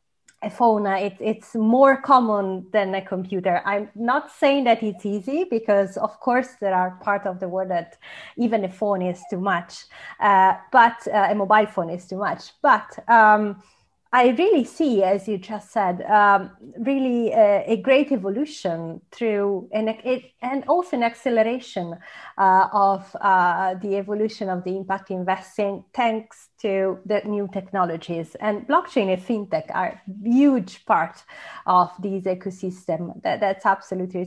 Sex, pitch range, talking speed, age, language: female, 185-225 Hz, 160 wpm, 30-49, English